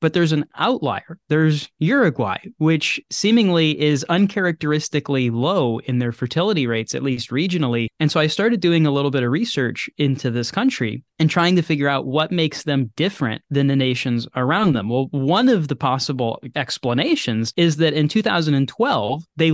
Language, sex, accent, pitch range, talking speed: English, male, American, 135-170 Hz, 170 wpm